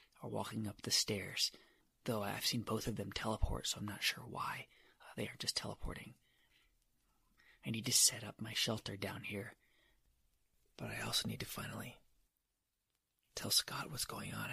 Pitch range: 95-110 Hz